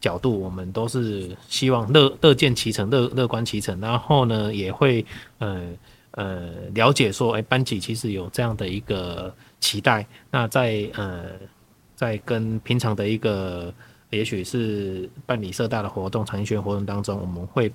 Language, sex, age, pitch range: Chinese, male, 30-49, 95-120 Hz